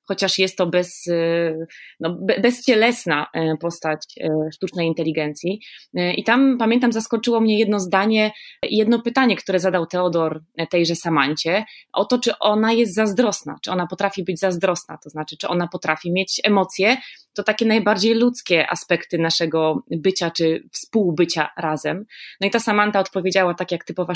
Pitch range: 170-220 Hz